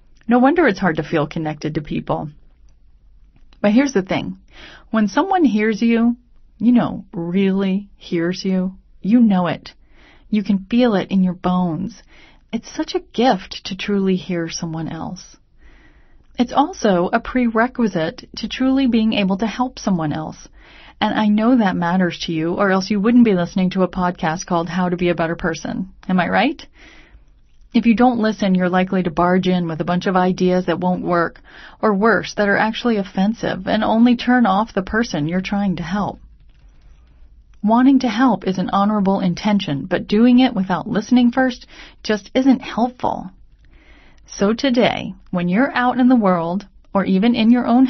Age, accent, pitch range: 30-49, American, 180-235 Hz